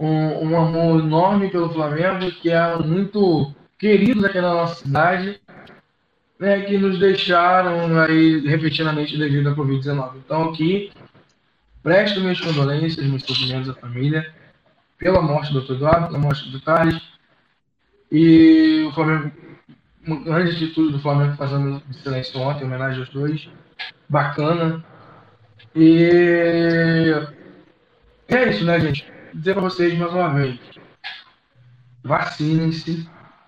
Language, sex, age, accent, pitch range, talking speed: Portuguese, male, 10-29, Brazilian, 145-170 Hz, 120 wpm